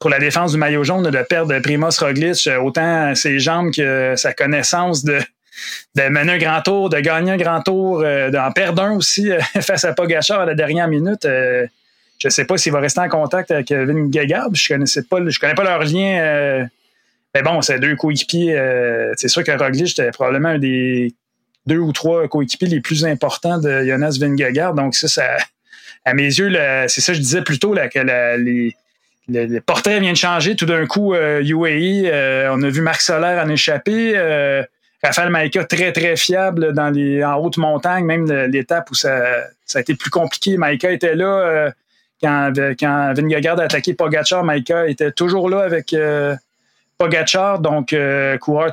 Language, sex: French, male